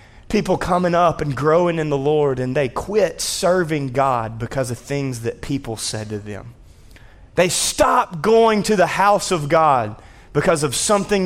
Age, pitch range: 30-49, 120-170 Hz